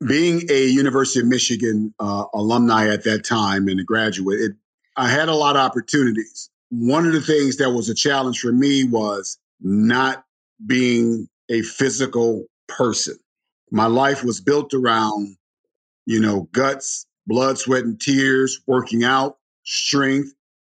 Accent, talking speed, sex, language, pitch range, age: American, 150 wpm, male, English, 115-140 Hz, 50-69